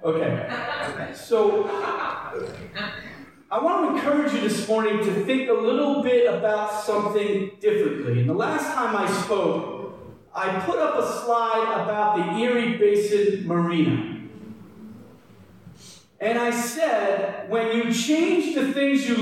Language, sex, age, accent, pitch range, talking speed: English, male, 40-59, American, 200-235 Hz, 130 wpm